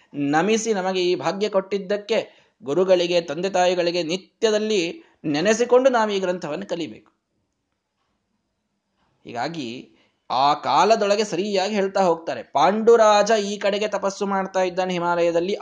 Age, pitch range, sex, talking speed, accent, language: 20-39, 145-200 Hz, male, 100 wpm, native, Kannada